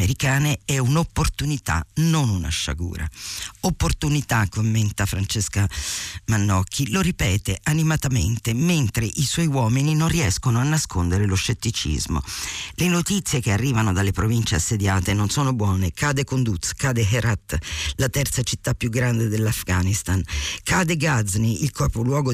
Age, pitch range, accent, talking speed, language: 50-69, 100-140 Hz, native, 125 wpm, Italian